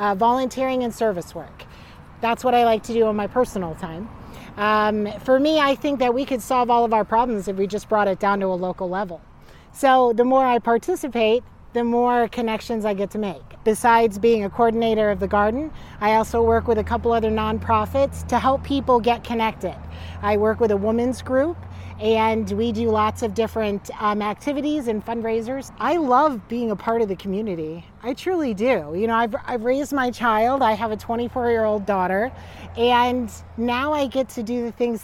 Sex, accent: female, American